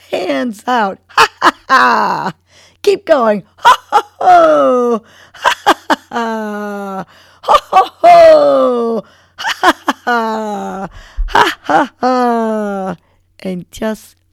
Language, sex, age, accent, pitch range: English, female, 50-69, American, 145-235 Hz